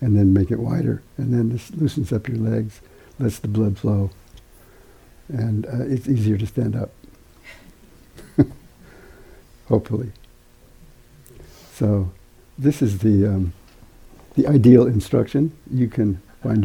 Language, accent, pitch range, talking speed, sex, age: English, American, 105-120 Hz, 125 wpm, male, 60-79